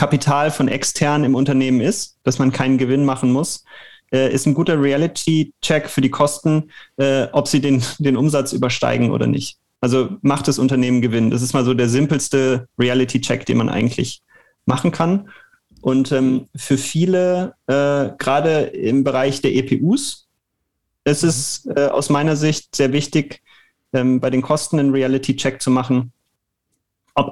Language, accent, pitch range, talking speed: German, German, 130-150 Hz, 145 wpm